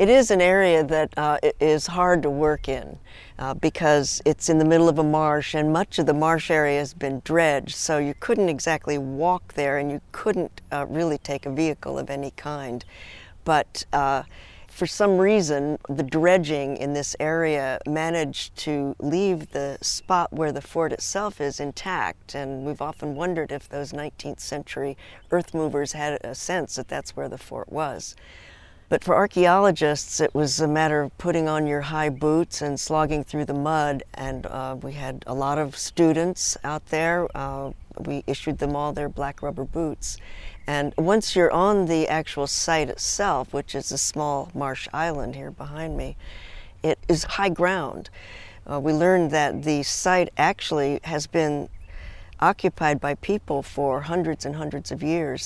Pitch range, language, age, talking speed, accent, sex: 140-160 Hz, English, 50-69, 175 wpm, American, female